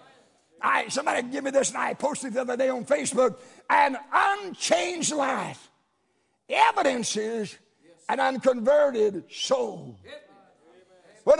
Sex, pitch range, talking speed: male, 240-310 Hz, 110 wpm